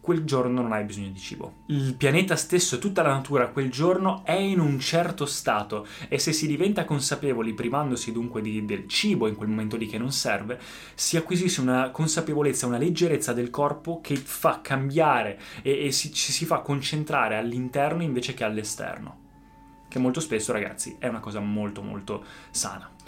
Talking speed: 175 wpm